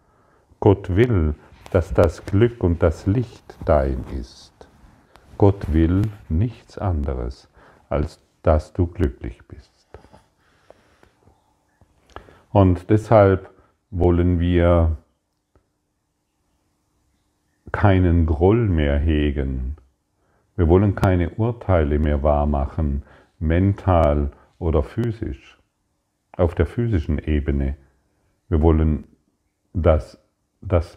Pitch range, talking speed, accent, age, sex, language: 75-95 Hz, 85 wpm, German, 50-69, male, German